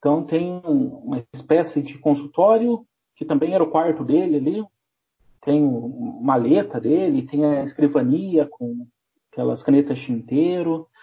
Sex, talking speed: male, 135 wpm